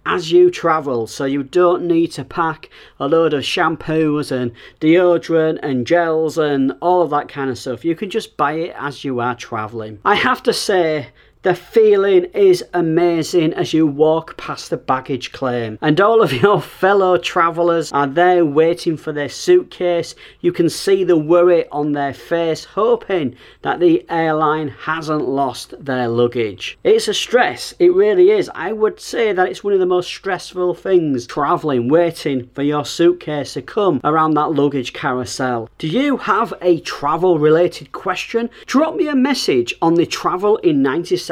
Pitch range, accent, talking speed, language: 145-230 Hz, British, 170 wpm, English